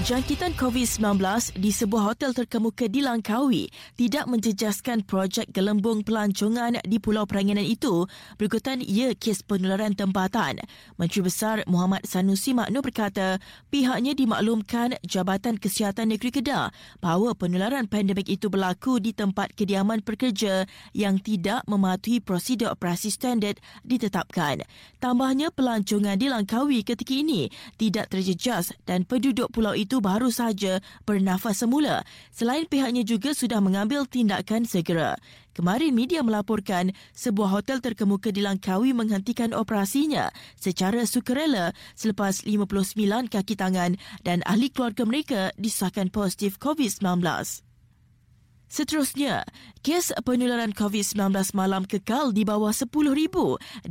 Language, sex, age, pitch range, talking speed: Malay, female, 20-39, 195-245 Hz, 120 wpm